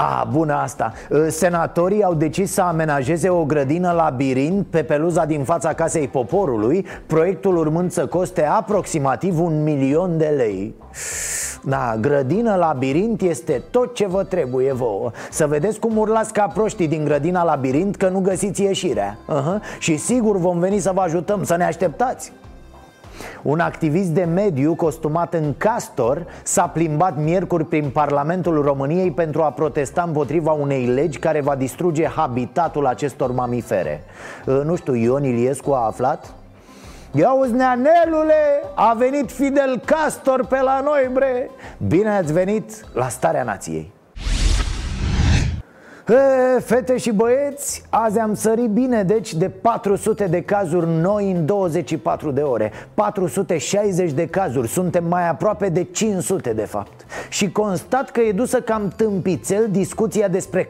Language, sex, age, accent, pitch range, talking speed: Romanian, male, 30-49, native, 155-210 Hz, 135 wpm